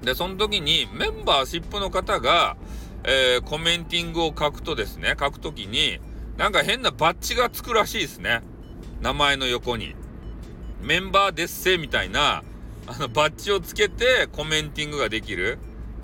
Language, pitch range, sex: Japanese, 110-165 Hz, male